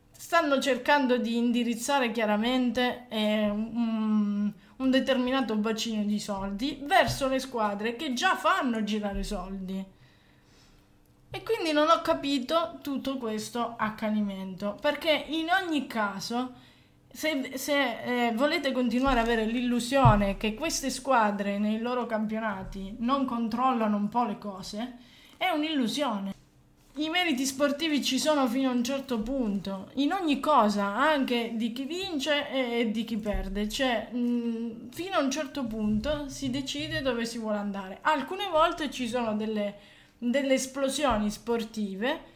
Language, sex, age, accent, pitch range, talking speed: Italian, female, 20-39, native, 215-280 Hz, 135 wpm